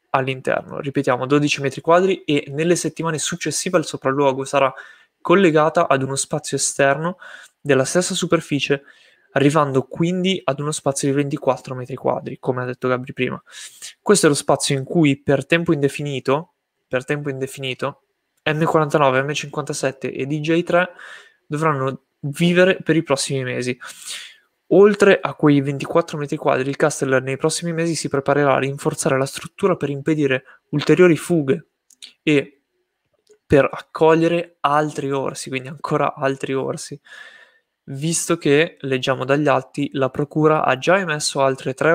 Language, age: Italian, 20-39